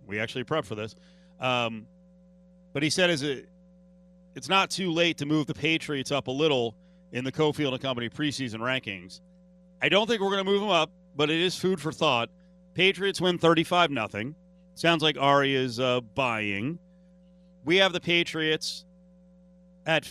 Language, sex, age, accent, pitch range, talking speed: English, male, 40-59, American, 130-180 Hz, 175 wpm